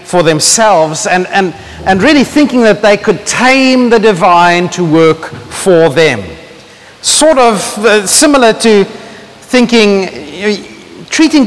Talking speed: 125 wpm